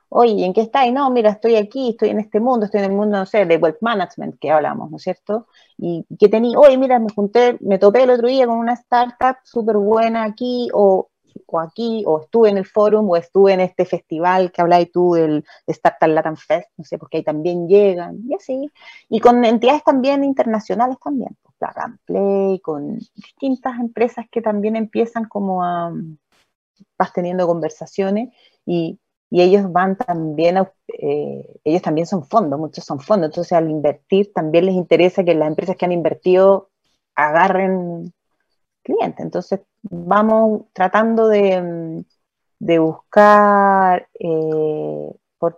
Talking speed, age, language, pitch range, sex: 170 wpm, 30-49, Spanish, 175-230 Hz, female